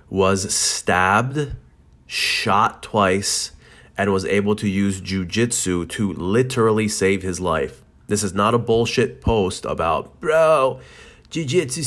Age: 30-49